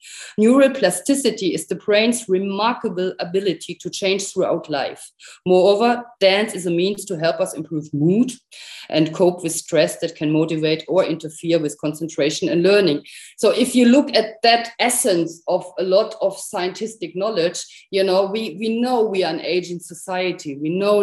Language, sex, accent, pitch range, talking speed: English, female, German, 165-215 Hz, 165 wpm